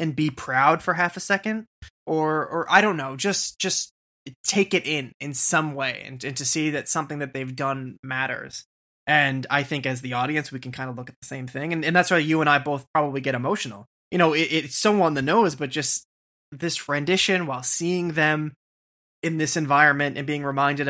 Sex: male